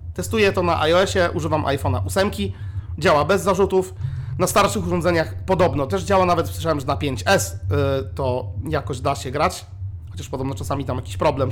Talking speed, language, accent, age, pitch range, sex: 170 wpm, Polish, native, 30-49, 95-155 Hz, male